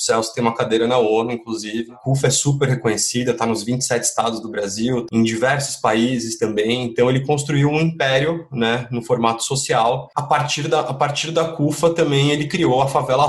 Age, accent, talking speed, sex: 20-39, Brazilian, 200 wpm, male